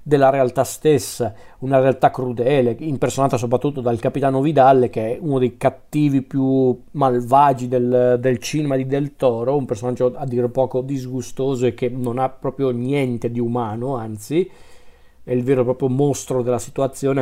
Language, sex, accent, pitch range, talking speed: Italian, male, native, 125-150 Hz, 165 wpm